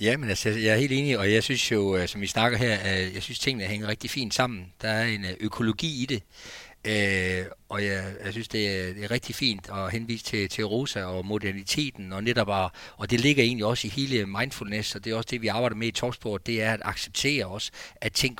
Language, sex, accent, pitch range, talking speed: Danish, male, native, 105-130 Hz, 240 wpm